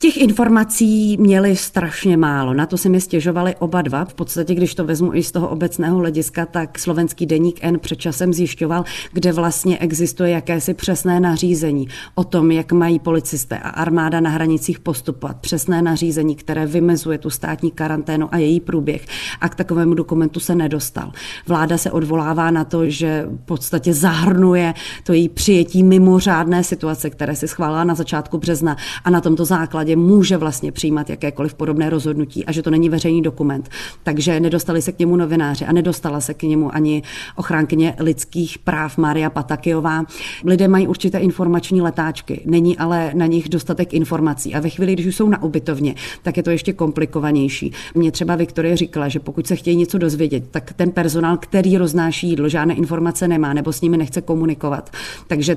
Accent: native